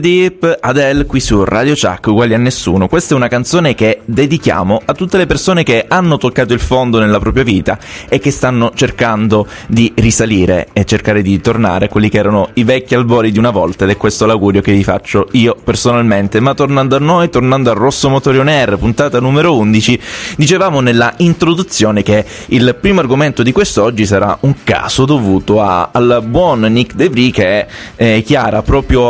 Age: 20-39